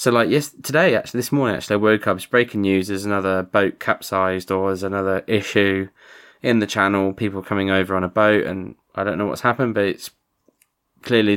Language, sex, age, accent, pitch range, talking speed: English, male, 20-39, British, 95-120 Hz, 210 wpm